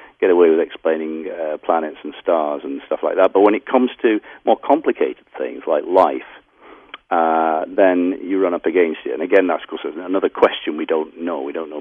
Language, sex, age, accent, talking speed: English, male, 50-69, British, 205 wpm